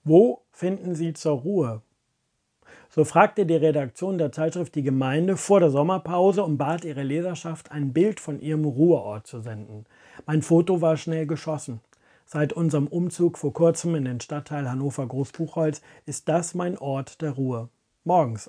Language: German